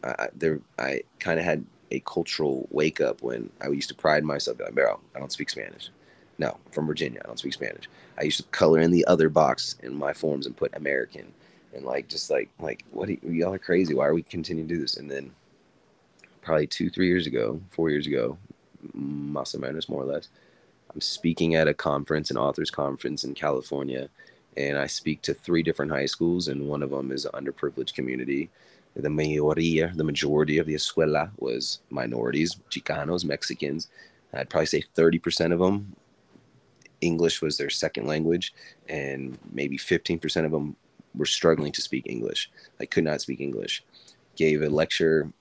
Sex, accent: male, American